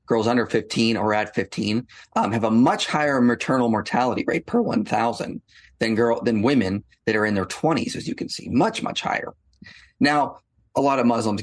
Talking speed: 185 wpm